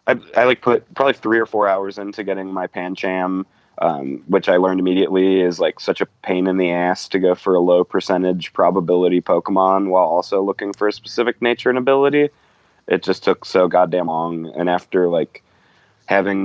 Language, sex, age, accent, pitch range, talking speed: English, male, 20-39, American, 90-100 Hz, 190 wpm